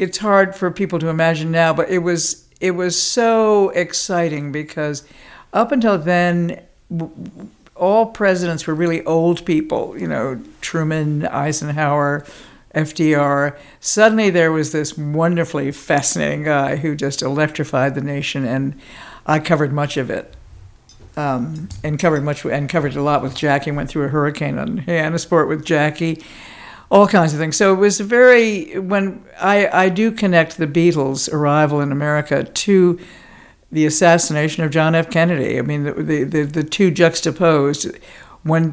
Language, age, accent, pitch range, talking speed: English, 60-79, American, 145-180 Hz, 155 wpm